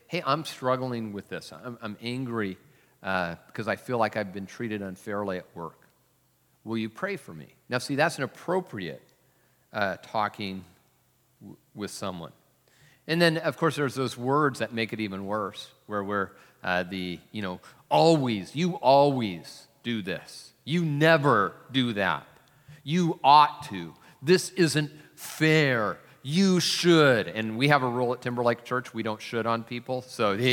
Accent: American